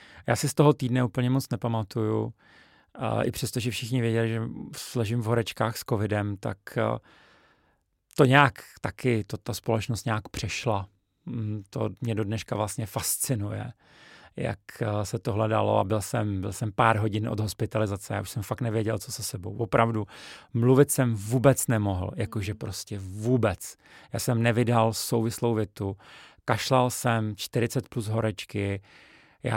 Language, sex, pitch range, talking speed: Czech, male, 105-125 Hz, 150 wpm